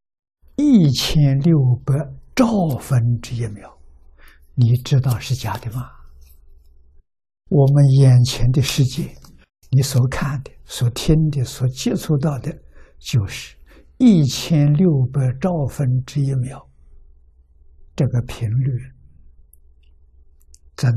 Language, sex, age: Chinese, male, 60-79